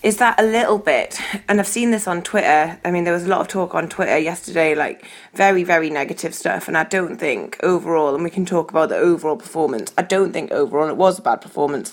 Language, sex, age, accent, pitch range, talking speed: English, female, 20-39, British, 165-200 Hz, 245 wpm